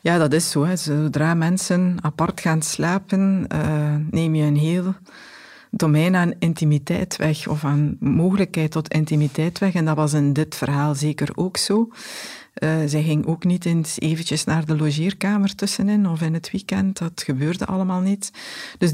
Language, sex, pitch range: Dutch, female, 155-180 Hz